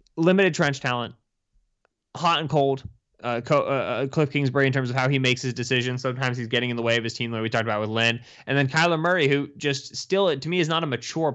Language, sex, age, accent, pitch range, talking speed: English, male, 20-39, American, 110-140 Hz, 250 wpm